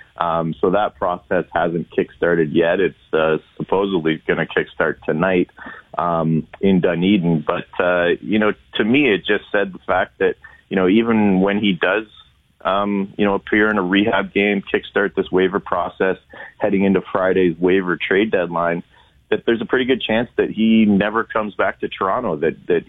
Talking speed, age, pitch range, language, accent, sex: 175 wpm, 30-49, 90-100 Hz, English, American, male